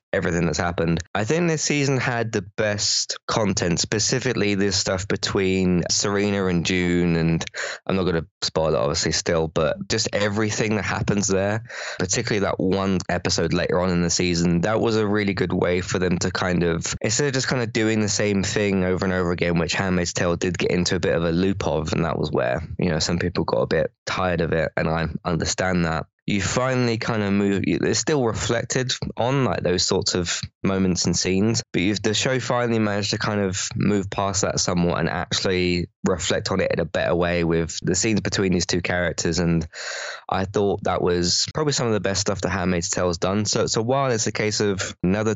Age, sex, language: 20-39, male, English